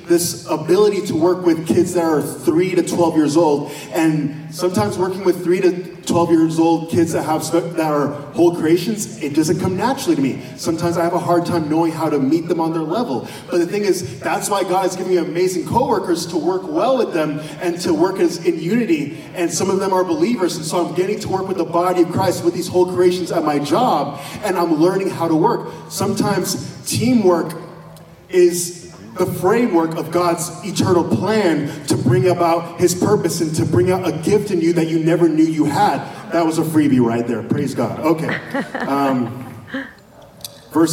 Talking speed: 205 wpm